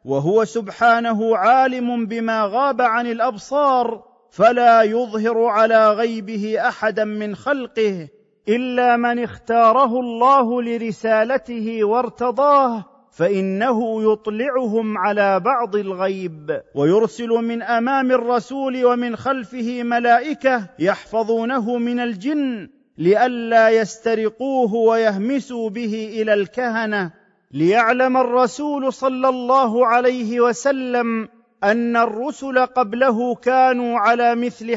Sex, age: male, 40-59